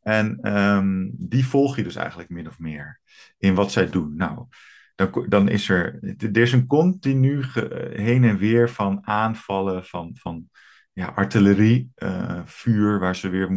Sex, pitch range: male, 95-115 Hz